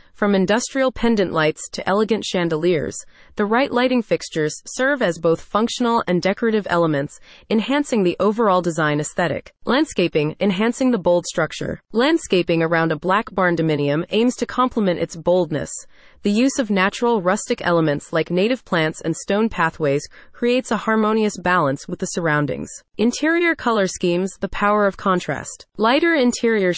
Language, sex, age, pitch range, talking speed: English, female, 30-49, 170-230 Hz, 150 wpm